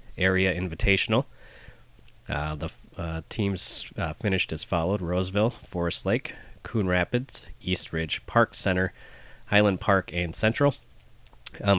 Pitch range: 85-100 Hz